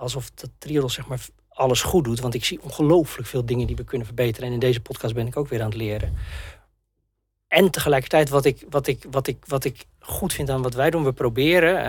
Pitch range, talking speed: 125-160 Hz, 230 wpm